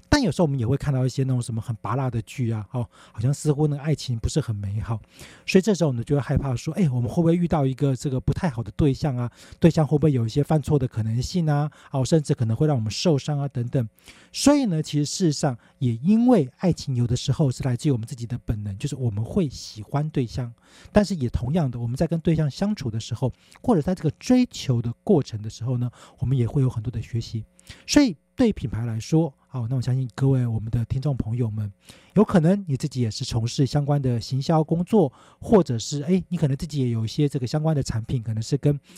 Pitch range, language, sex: 120-160 Hz, Chinese, male